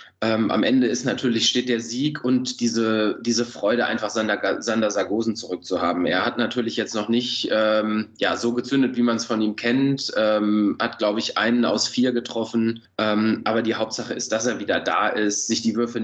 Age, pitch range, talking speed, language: 20-39, 105-120 Hz, 200 wpm, German